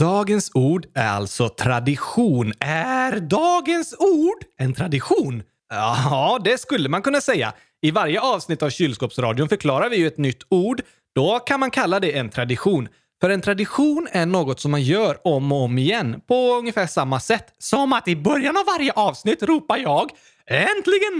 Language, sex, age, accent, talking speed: Swedish, male, 30-49, native, 170 wpm